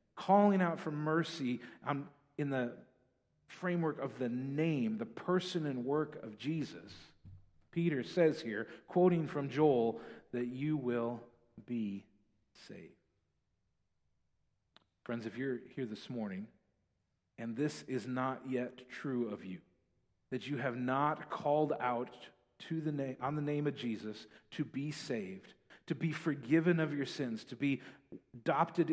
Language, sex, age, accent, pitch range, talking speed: English, male, 40-59, American, 120-155 Hz, 140 wpm